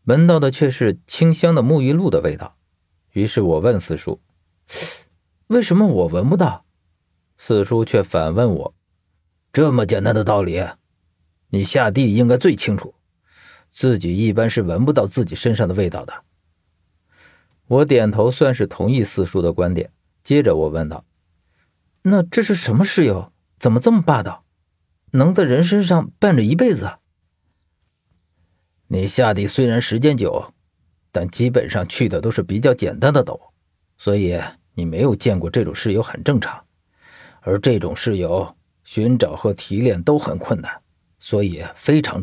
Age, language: 50-69, Chinese